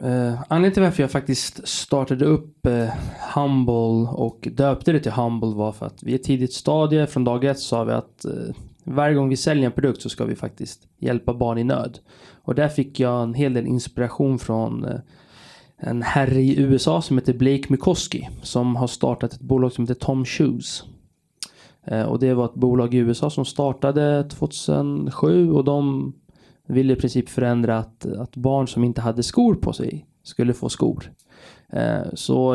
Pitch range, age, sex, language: 120-140 Hz, 20-39, male, Swedish